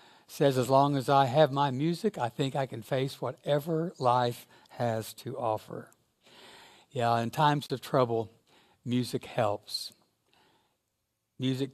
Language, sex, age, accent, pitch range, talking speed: English, male, 60-79, American, 115-145 Hz, 135 wpm